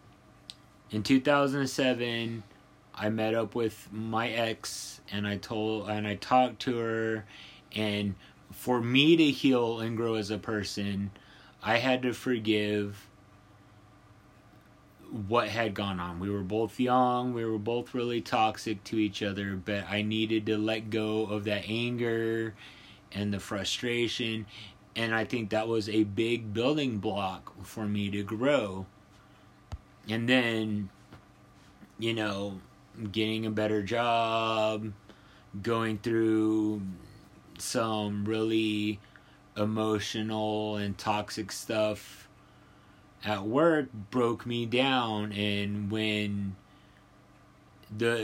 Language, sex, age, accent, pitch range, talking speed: English, male, 30-49, American, 105-115 Hz, 120 wpm